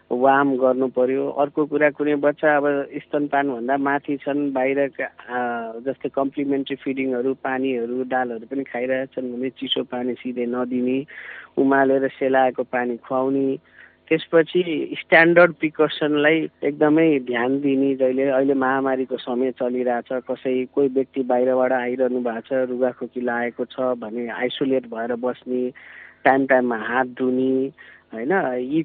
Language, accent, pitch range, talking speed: English, Indian, 125-140 Hz, 100 wpm